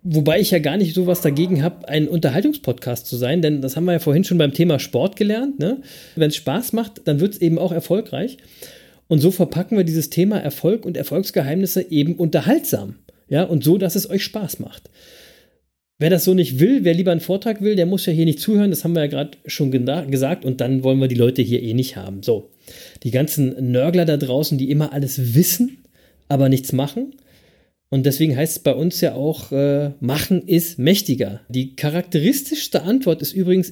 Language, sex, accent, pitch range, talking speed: German, male, German, 140-190 Hz, 205 wpm